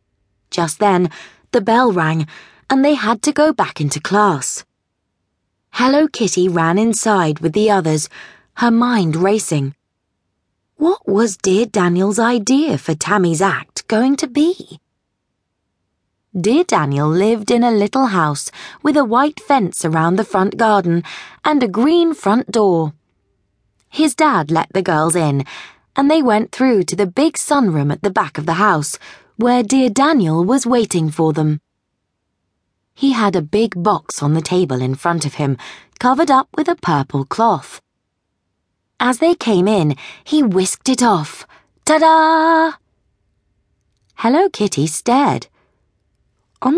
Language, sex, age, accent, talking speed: English, female, 20-39, British, 145 wpm